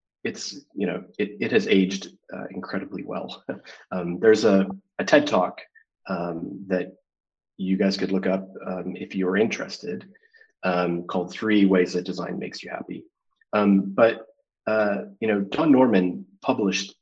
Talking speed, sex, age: 155 wpm, male, 30-49